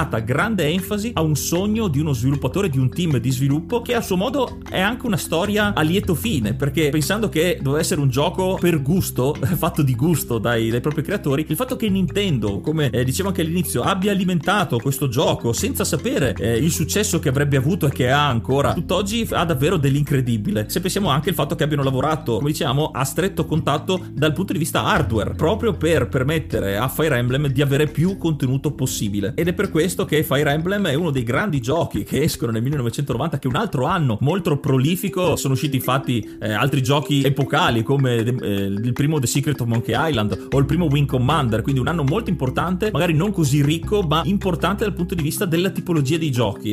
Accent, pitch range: native, 135-175 Hz